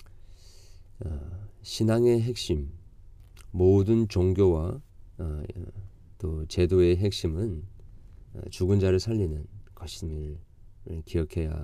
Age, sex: 40-59, male